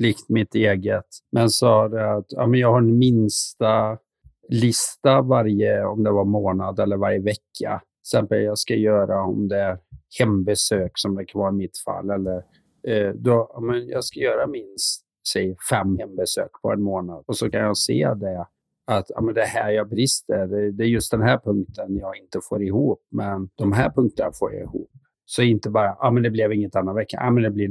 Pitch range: 100-115 Hz